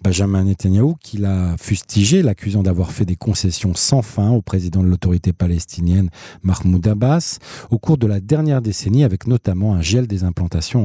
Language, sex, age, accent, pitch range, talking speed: French, male, 40-59, French, 95-120 Hz, 170 wpm